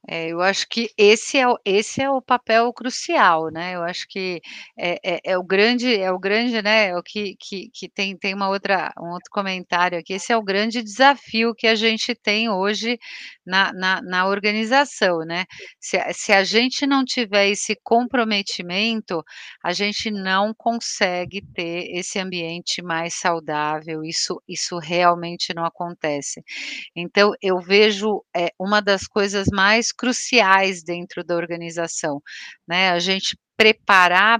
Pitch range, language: 180-220 Hz, Portuguese